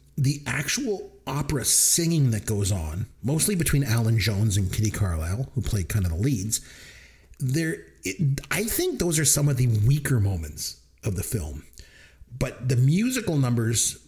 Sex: male